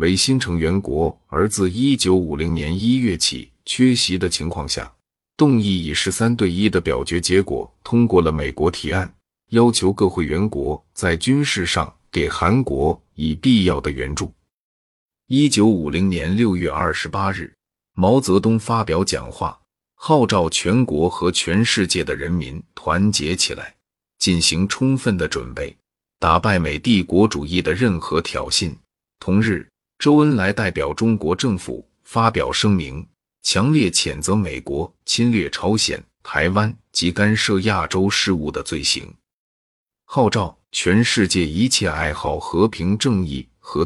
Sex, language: male, Chinese